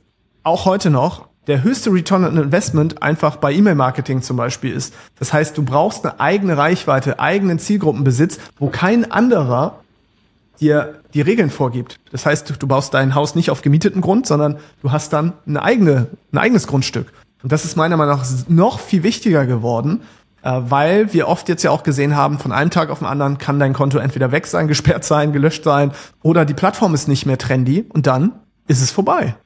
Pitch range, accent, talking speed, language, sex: 140-180 Hz, German, 195 wpm, German, male